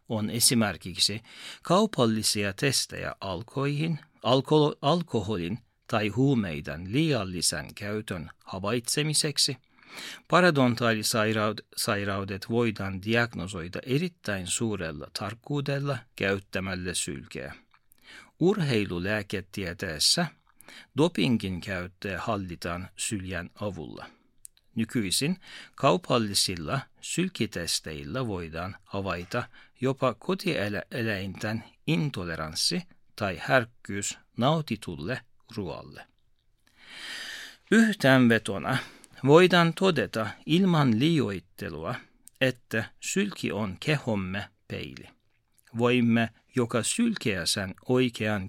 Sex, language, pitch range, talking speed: male, Finnish, 95-135 Hz, 65 wpm